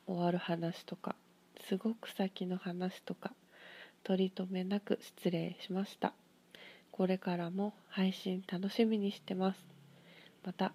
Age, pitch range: 20-39, 180-205 Hz